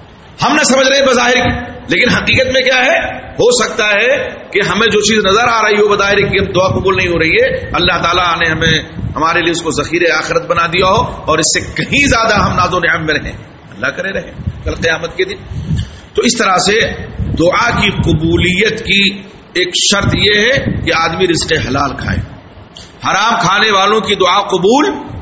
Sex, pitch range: male, 155-200 Hz